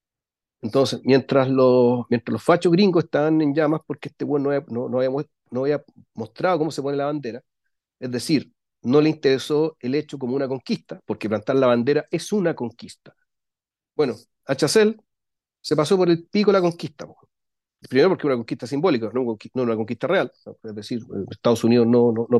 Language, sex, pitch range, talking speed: Spanish, male, 120-160 Hz, 185 wpm